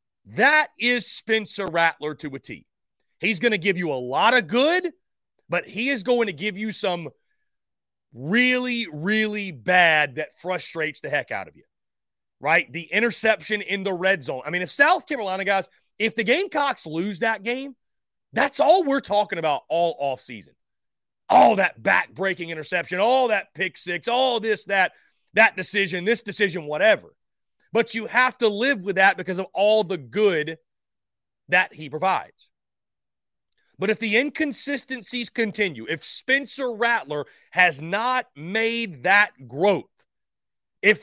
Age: 30-49